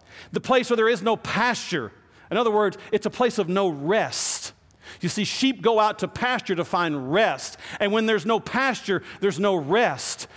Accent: American